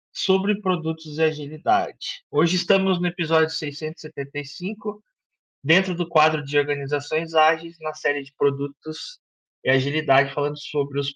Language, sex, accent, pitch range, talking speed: Portuguese, male, Brazilian, 135-165 Hz, 130 wpm